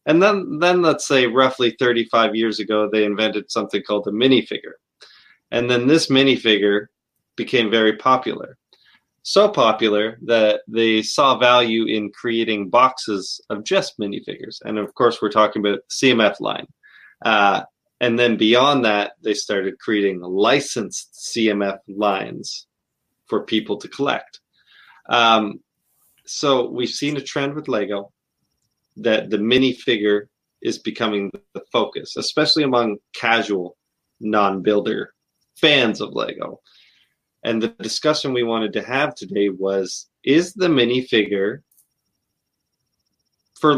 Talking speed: 125 wpm